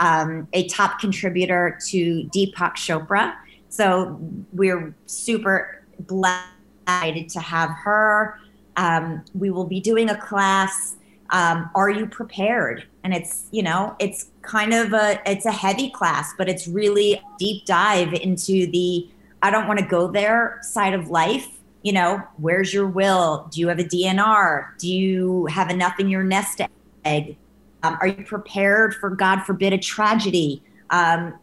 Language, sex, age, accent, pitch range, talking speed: English, female, 30-49, American, 175-205 Hz, 155 wpm